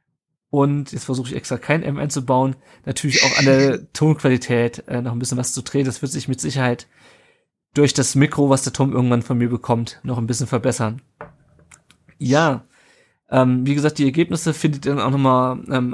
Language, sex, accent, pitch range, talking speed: German, male, German, 130-150 Hz, 190 wpm